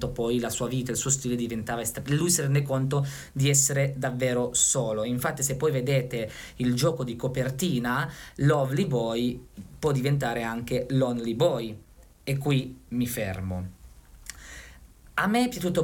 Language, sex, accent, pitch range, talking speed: Italian, male, native, 125-155 Hz, 150 wpm